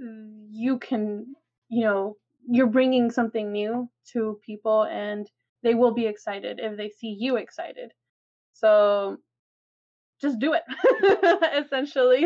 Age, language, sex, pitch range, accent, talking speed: 20-39, English, female, 215-260 Hz, American, 120 wpm